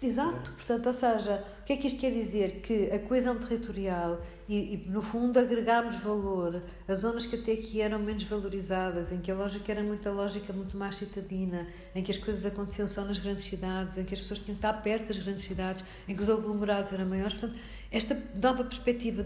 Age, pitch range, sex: 50-69, 195-240 Hz, female